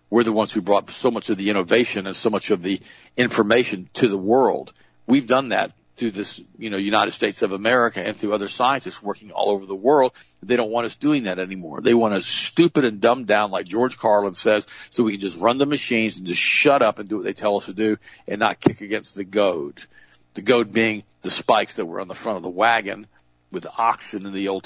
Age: 50-69